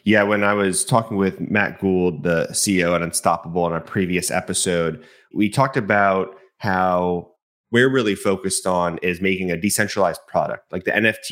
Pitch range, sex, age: 85-105 Hz, male, 20-39